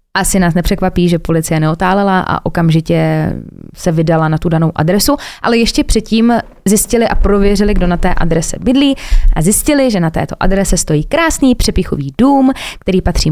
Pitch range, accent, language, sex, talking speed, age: 170-205 Hz, native, Czech, female, 165 wpm, 20-39